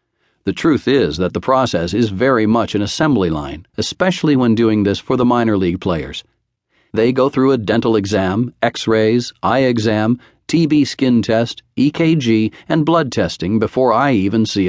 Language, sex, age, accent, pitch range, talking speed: English, male, 50-69, American, 105-135 Hz, 170 wpm